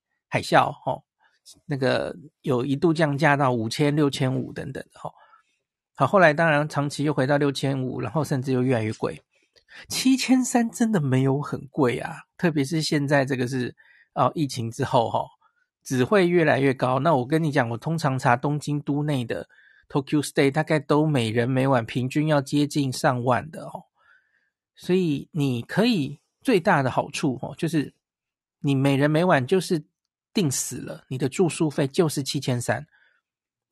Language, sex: Chinese, male